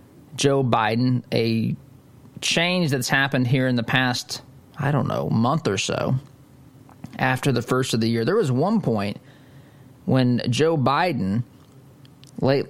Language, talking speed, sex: English, 140 wpm, male